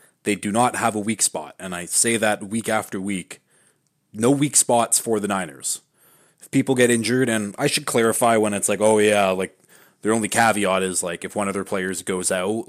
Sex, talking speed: male, 220 wpm